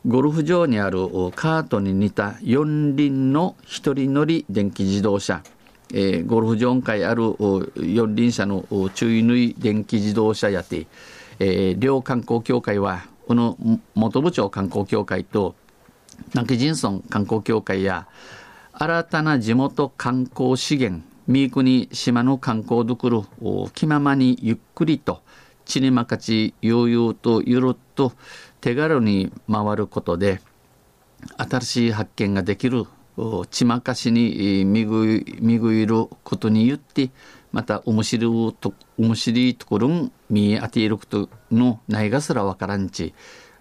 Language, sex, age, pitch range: Japanese, male, 50-69, 105-125 Hz